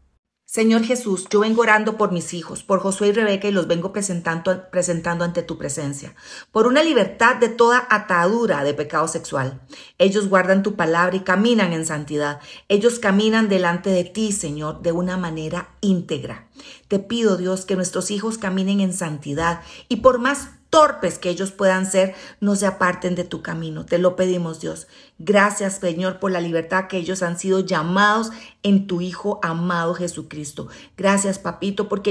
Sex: female